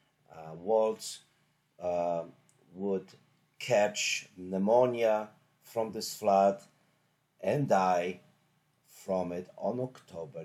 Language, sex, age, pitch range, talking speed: English, male, 50-69, 95-135 Hz, 85 wpm